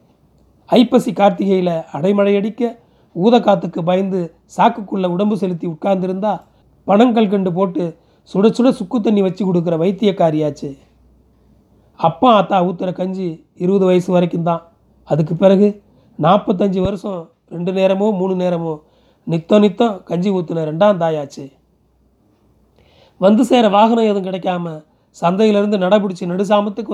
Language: Tamil